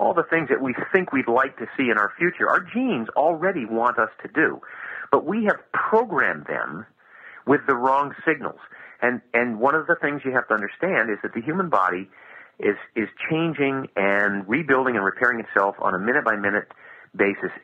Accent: American